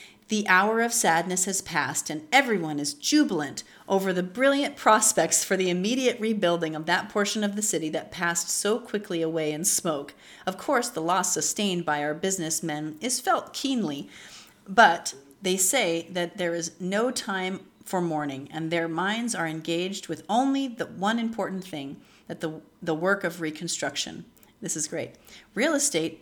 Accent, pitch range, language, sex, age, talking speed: American, 160-220 Hz, English, female, 40-59, 165 wpm